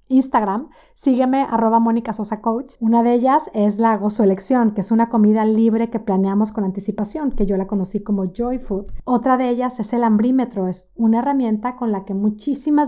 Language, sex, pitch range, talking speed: Spanish, female, 210-250 Hz, 190 wpm